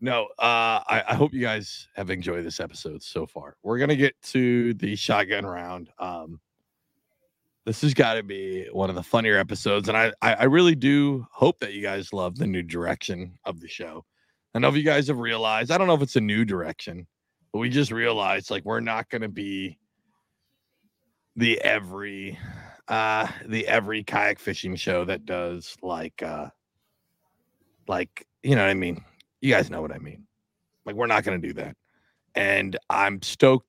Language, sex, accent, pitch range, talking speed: English, male, American, 95-120 Hz, 185 wpm